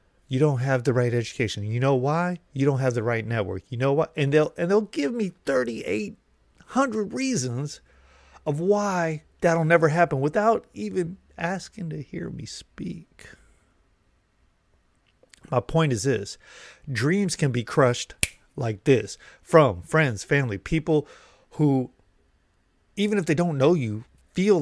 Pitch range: 115-170 Hz